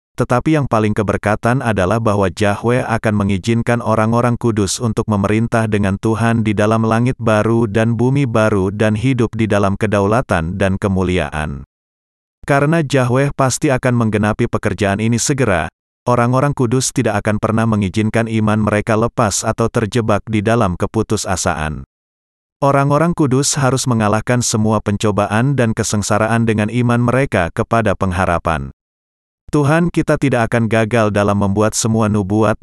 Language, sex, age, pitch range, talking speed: Indonesian, male, 30-49, 100-125 Hz, 135 wpm